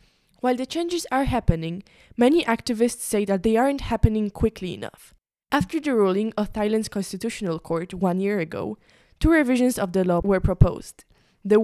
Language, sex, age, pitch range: English, female, 10-29, 190-245 Hz